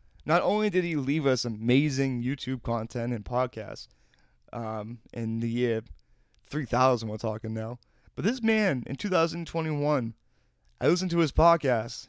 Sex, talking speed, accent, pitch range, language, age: male, 145 wpm, American, 110-150 Hz, English, 20-39